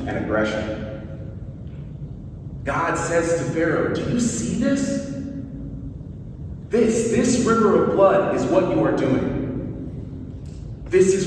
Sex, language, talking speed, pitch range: male, English, 115 wpm, 115-145 Hz